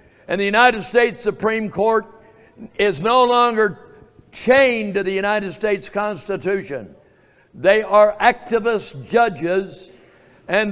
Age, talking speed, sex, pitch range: 60-79, 110 wpm, male, 175-220 Hz